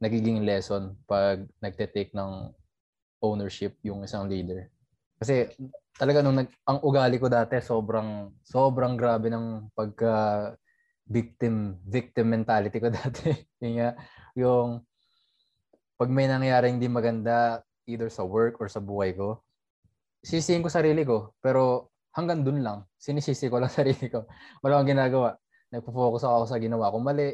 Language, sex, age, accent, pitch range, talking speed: Filipino, male, 20-39, native, 105-125 Hz, 135 wpm